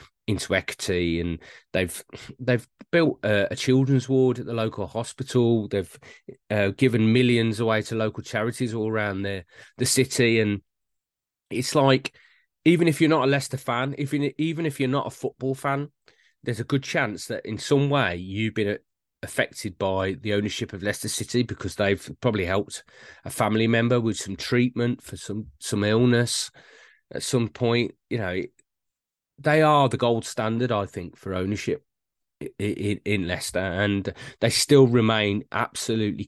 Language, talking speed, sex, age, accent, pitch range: English, 160 wpm, male, 30-49, British, 105-130 Hz